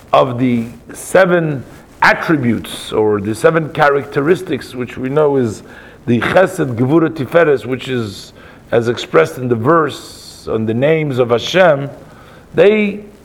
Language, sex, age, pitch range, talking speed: English, male, 50-69, 130-175 Hz, 130 wpm